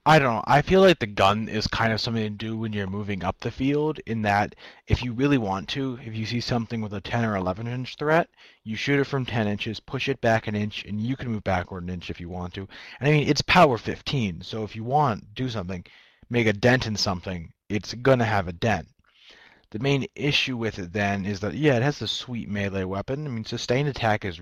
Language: English